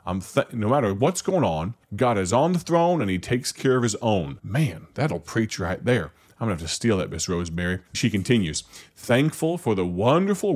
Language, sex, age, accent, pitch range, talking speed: English, male, 30-49, American, 85-110 Hz, 220 wpm